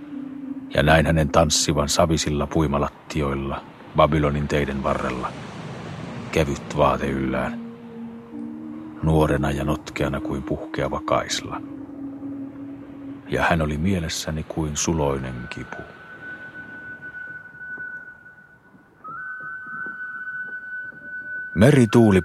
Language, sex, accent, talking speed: Finnish, male, native, 70 wpm